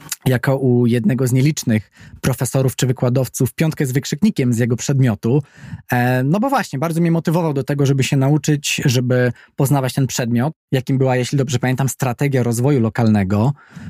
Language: Polish